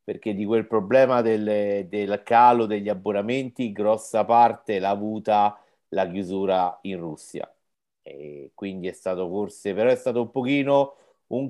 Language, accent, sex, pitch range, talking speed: Italian, native, male, 100-120 Hz, 150 wpm